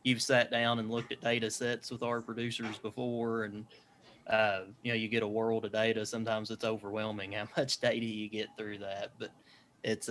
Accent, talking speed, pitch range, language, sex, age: American, 200 wpm, 105-115 Hz, English, male, 20-39